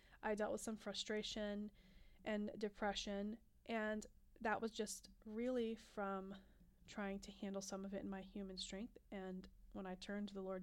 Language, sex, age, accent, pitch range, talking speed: English, female, 20-39, American, 190-210 Hz, 170 wpm